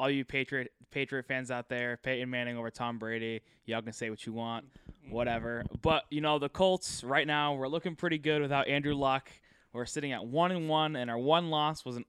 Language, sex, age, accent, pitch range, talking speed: English, male, 20-39, American, 115-140 Hz, 230 wpm